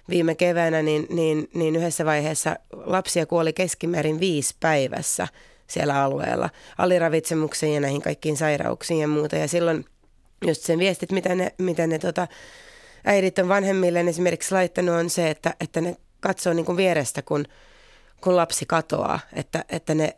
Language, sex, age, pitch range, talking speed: Finnish, female, 30-49, 155-180 Hz, 140 wpm